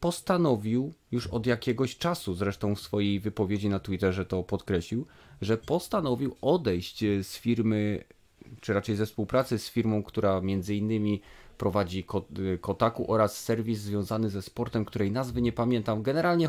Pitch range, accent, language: 100-125 Hz, native, Polish